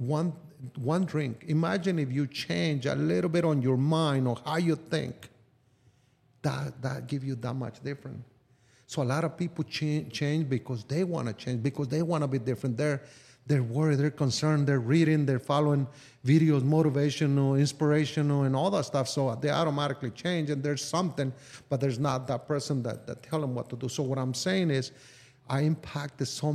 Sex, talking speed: male, 190 wpm